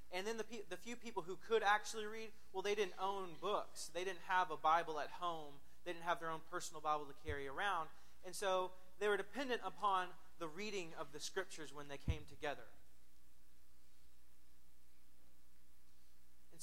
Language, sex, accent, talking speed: English, male, American, 175 wpm